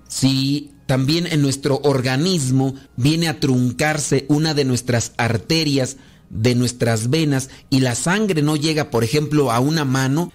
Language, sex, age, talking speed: Spanish, male, 40-59, 145 wpm